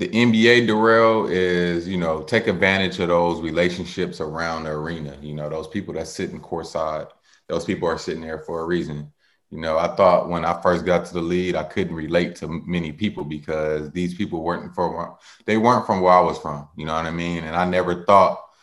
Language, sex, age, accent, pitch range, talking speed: English, male, 20-39, American, 85-100 Hz, 220 wpm